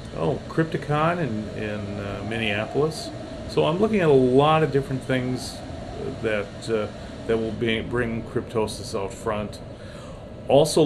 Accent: American